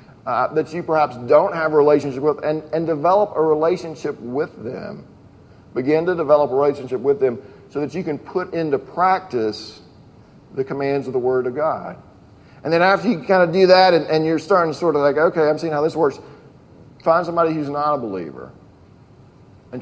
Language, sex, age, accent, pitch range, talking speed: English, male, 40-59, American, 135-160 Hz, 200 wpm